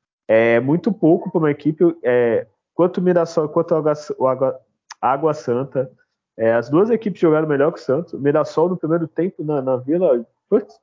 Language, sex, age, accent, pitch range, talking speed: Portuguese, male, 20-39, Brazilian, 135-180 Hz, 175 wpm